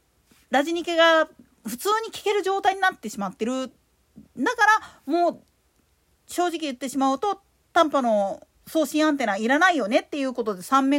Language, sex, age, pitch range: Japanese, female, 40-59, 250-350 Hz